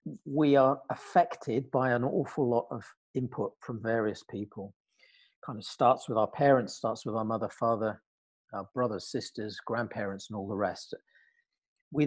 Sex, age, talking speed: male, 40-59, 160 wpm